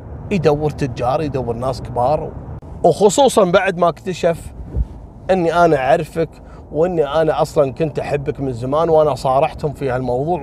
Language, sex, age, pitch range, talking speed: Arabic, male, 30-49, 125-170 Hz, 130 wpm